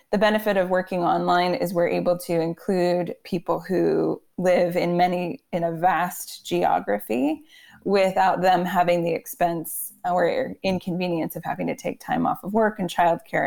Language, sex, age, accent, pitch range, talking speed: English, female, 20-39, American, 170-190 Hz, 160 wpm